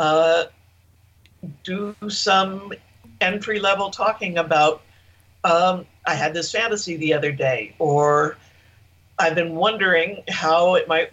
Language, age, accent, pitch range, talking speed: English, 50-69, American, 120-175 Hz, 115 wpm